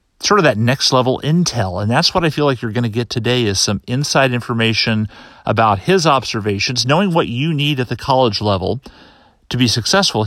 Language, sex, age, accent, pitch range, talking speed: English, male, 40-59, American, 110-135 Hz, 205 wpm